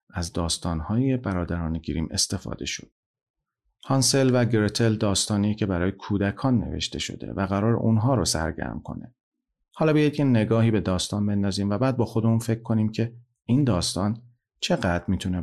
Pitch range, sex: 90-120 Hz, male